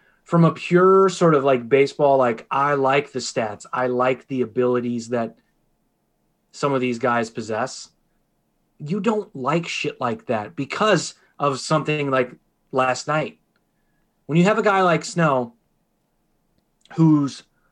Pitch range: 125-160 Hz